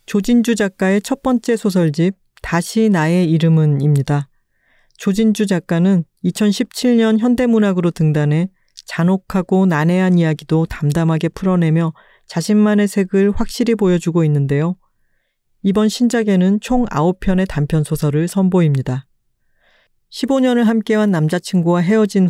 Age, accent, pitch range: 40-59, native, 160-205 Hz